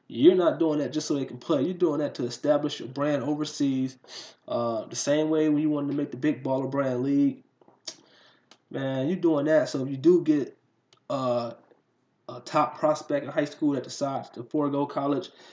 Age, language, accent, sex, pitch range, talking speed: 20-39, English, American, male, 125-160 Hz, 205 wpm